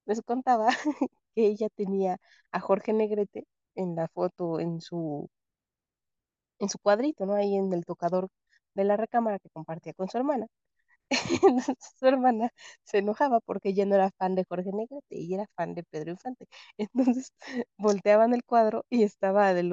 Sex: female